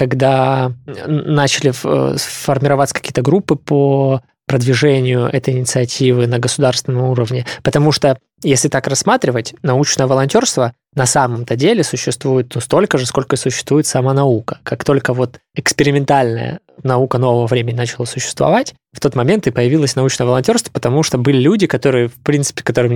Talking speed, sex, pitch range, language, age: 145 wpm, male, 125-145 Hz, Russian, 20-39